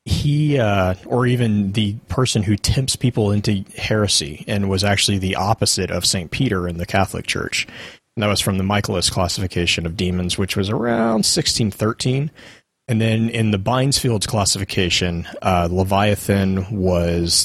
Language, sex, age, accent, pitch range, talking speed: English, male, 30-49, American, 95-115 Hz, 155 wpm